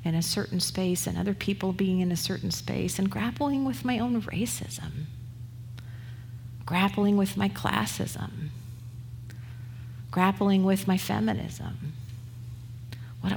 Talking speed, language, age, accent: 120 wpm, Italian, 50-69, American